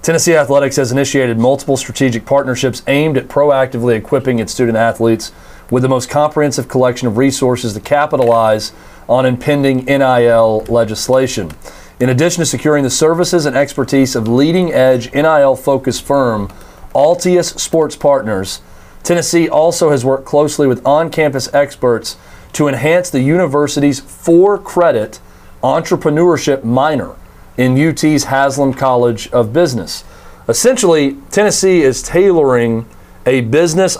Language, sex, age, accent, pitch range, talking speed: English, male, 40-59, American, 125-150 Hz, 120 wpm